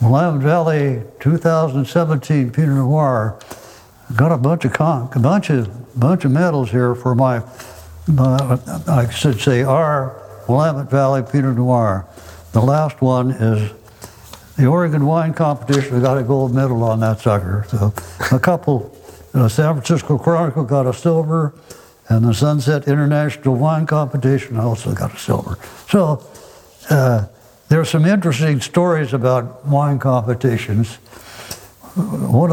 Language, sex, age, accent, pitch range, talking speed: English, male, 60-79, American, 125-150 Hz, 140 wpm